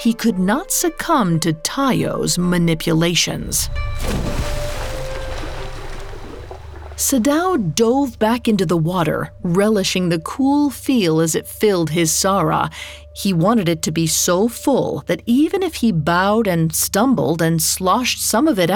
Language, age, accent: English, 40-59, American